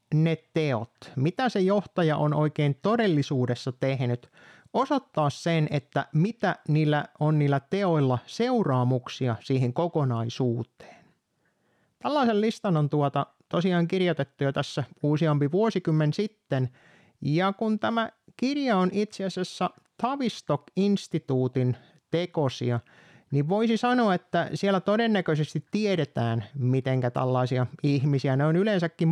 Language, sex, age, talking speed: Finnish, male, 30-49, 110 wpm